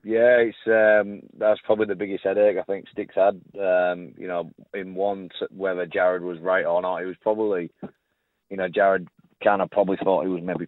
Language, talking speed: English, 200 wpm